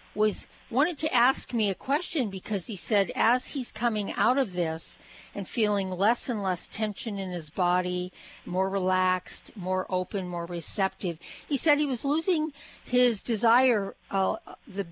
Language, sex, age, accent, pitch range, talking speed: English, female, 50-69, American, 195-250 Hz, 160 wpm